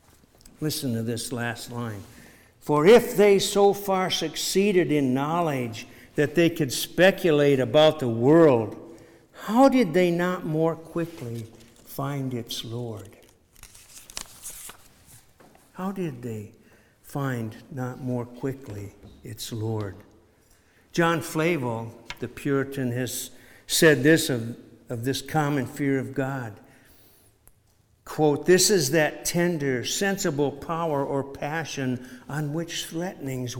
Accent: American